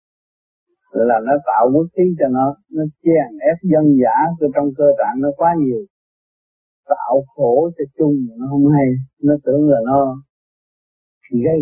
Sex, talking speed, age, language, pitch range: male, 155 wpm, 50-69, Vietnamese, 130-165 Hz